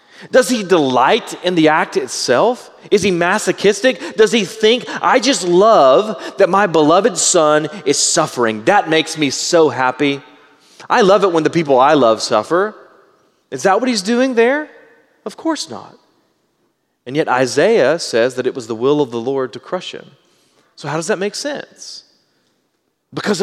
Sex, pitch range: male, 140-205 Hz